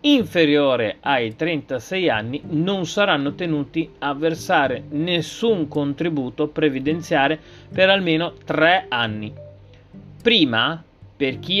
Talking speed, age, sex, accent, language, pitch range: 100 wpm, 40-59, male, native, Italian, 135-175 Hz